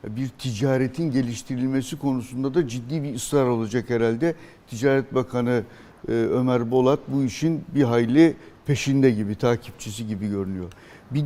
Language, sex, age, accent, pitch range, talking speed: Turkish, male, 60-79, native, 130-160 Hz, 130 wpm